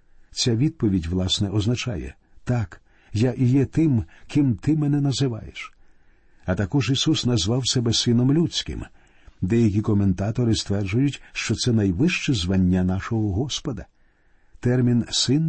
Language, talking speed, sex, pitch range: Ukrainian, 120 wpm, male, 100-135 Hz